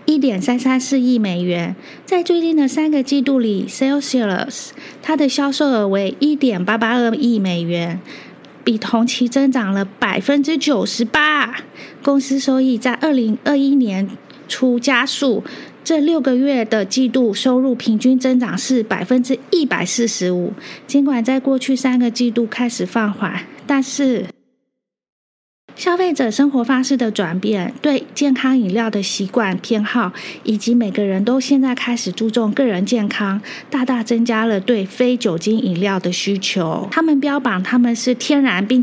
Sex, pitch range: female, 210-270 Hz